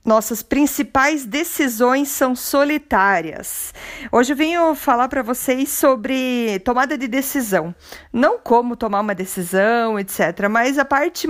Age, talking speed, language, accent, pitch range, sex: 50-69, 130 wpm, Portuguese, Brazilian, 225-285 Hz, female